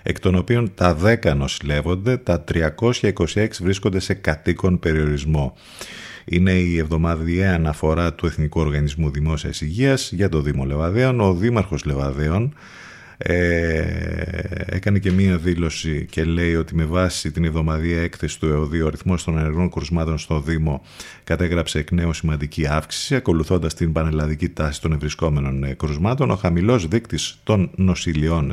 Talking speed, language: 140 wpm, Greek